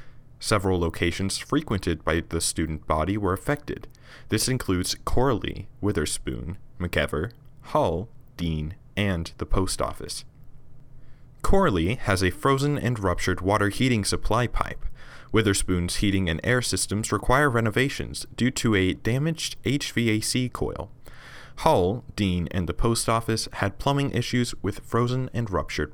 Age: 20-39